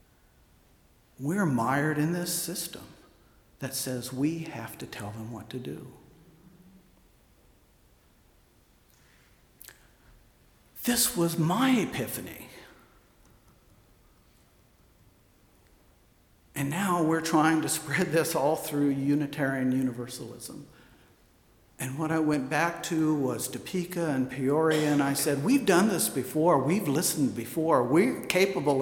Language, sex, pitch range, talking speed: English, male, 120-160 Hz, 110 wpm